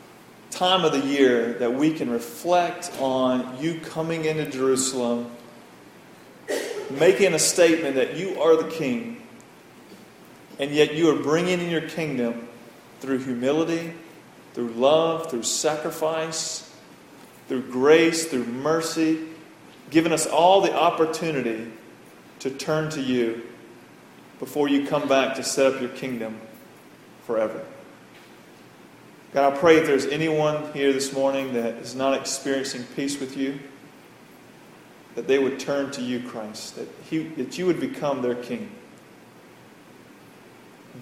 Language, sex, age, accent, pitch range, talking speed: English, male, 40-59, American, 125-155 Hz, 130 wpm